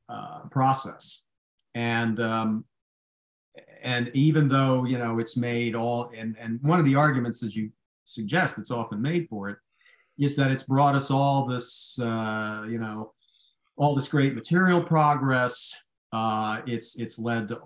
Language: English